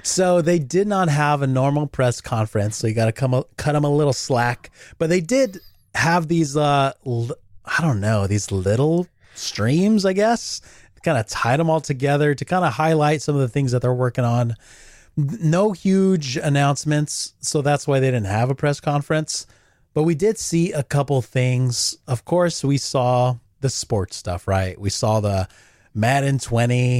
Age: 30-49